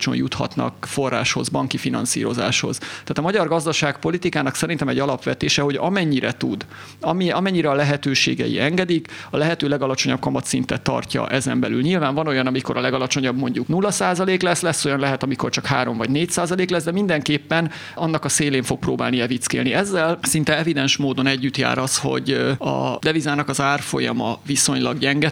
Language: Hungarian